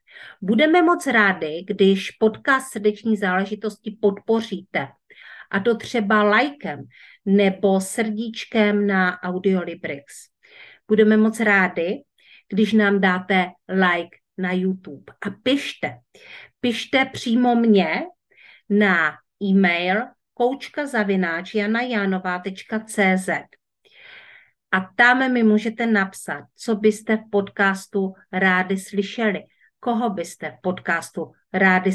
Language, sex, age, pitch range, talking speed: Czech, female, 50-69, 185-225 Hz, 90 wpm